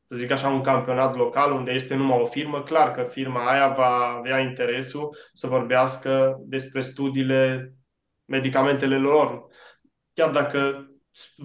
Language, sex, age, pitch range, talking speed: Romanian, male, 20-39, 130-145 Hz, 135 wpm